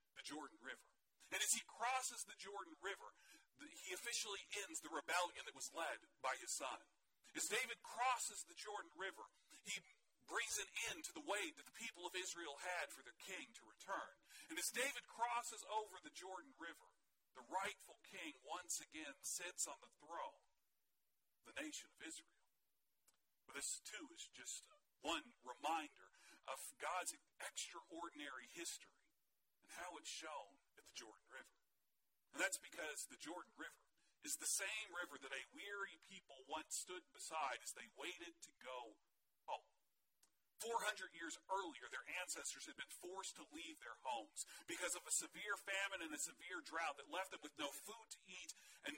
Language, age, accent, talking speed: English, 40-59, American, 170 wpm